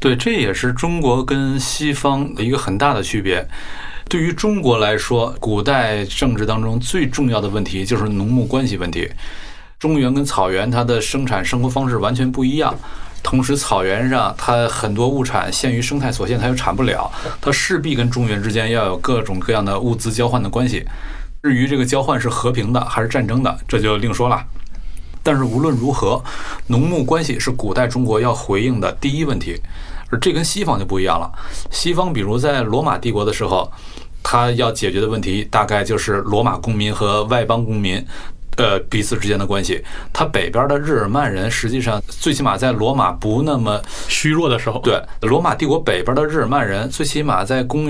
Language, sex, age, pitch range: Chinese, male, 20-39, 105-135 Hz